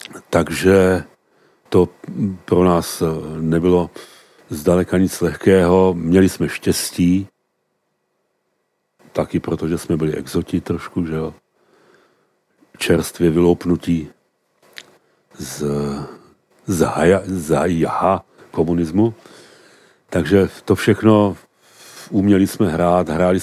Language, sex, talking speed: Czech, male, 80 wpm